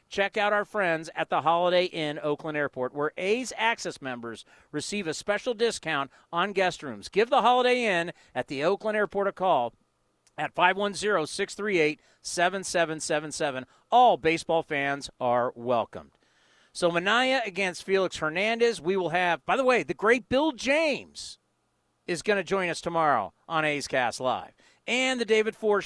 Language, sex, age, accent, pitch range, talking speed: English, male, 40-59, American, 160-210 Hz, 155 wpm